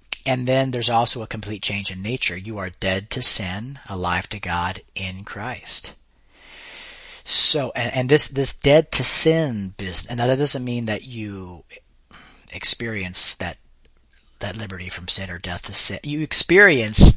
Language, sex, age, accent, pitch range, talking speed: English, male, 40-59, American, 95-130 Hz, 160 wpm